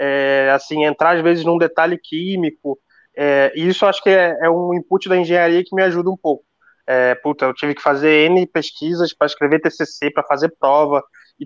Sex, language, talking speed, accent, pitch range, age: male, Portuguese, 205 wpm, Brazilian, 160-205 Hz, 20-39